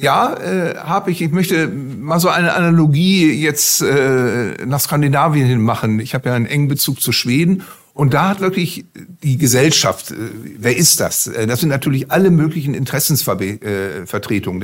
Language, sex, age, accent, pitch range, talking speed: German, male, 50-69, German, 135-170 Hz, 165 wpm